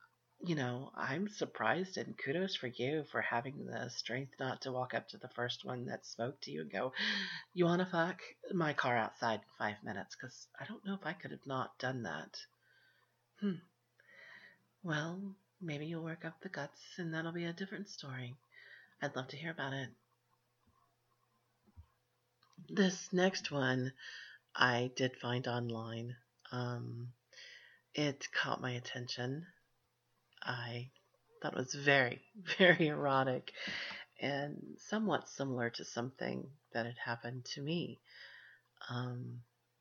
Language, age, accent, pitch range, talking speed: English, 40-59, American, 120-160 Hz, 145 wpm